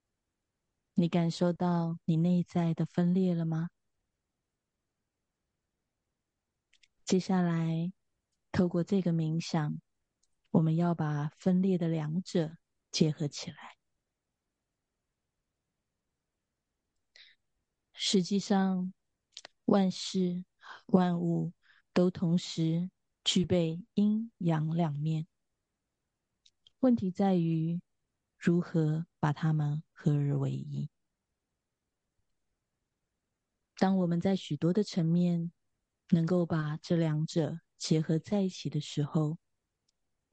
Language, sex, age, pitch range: Chinese, female, 30-49, 155-180 Hz